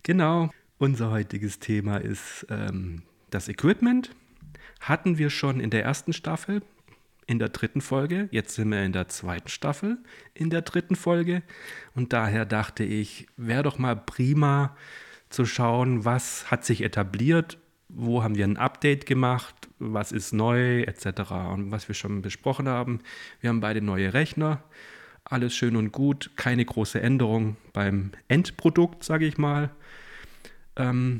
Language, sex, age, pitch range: German, male, 40-59, 110-145 Hz